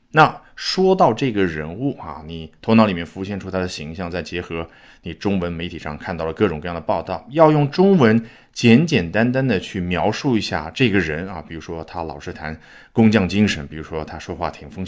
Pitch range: 85-125 Hz